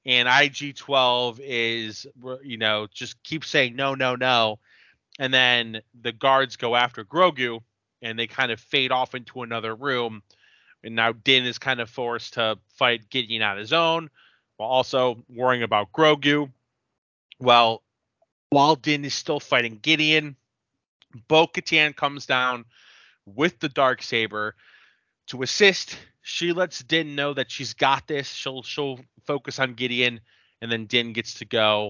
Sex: male